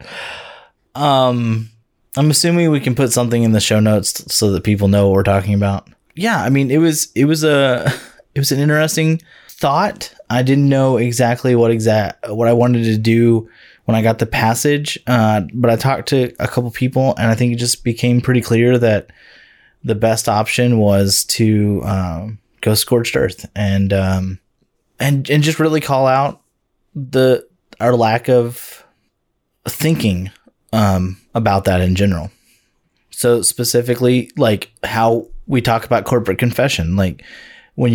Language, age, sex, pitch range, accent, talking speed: English, 20-39, male, 105-125 Hz, American, 165 wpm